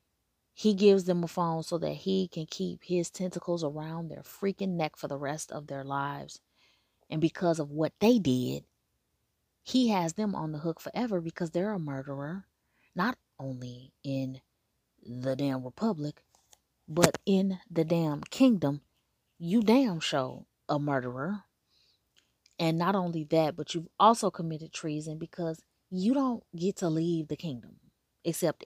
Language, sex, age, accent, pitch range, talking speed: English, female, 20-39, American, 145-195 Hz, 155 wpm